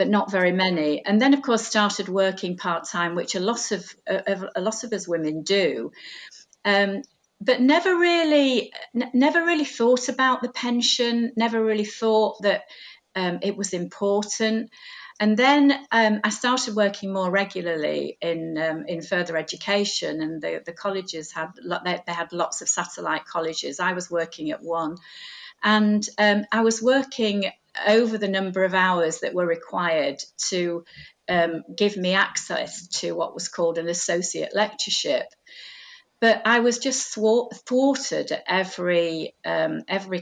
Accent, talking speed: British, 155 wpm